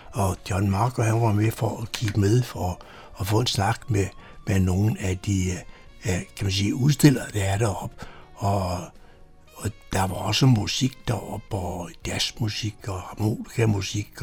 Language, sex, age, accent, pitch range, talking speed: Danish, male, 60-79, native, 95-120 Hz, 165 wpm